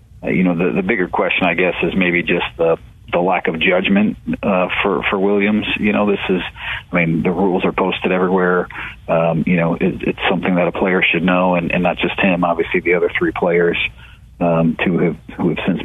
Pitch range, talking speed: 85-95 Hz, 220 wpm